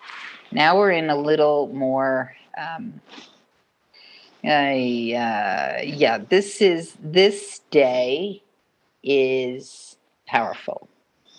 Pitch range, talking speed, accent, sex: 130-150 Hz, 80 wpm, American, female